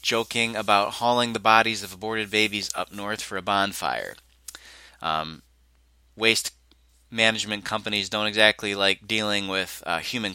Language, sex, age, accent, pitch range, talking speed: English, male, 30-49, American, 90-110 Hz, 140 wpm